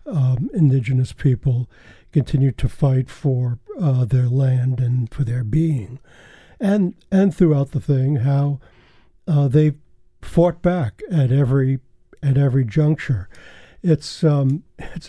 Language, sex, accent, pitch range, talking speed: English, male, American, 130-155 Hz, 125 wpm